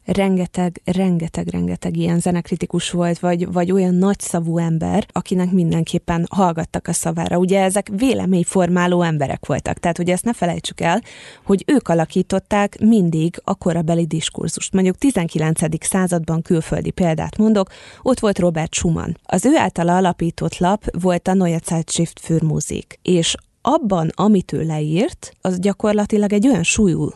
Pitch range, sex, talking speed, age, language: 160-195 Hz, female, 140 wpm, 20-39, Hungarian